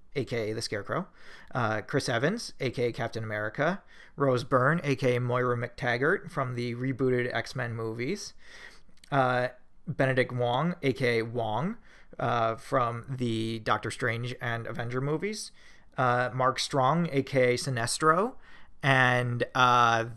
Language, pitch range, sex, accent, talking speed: English, 115-150 Hz, male, American, 115 wpm